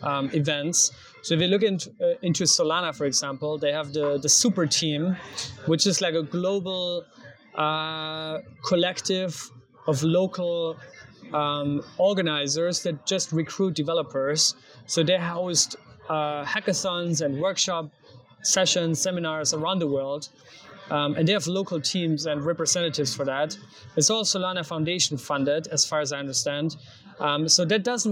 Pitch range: 150-185 Hz